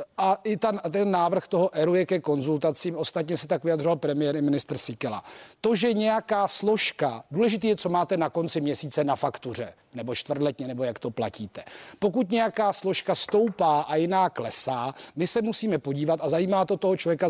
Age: 40-59